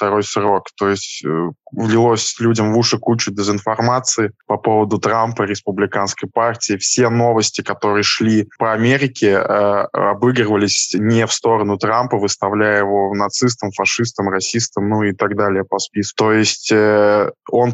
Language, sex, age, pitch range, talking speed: Russian, male, 20-39, 100-115 Hz, 145 wpm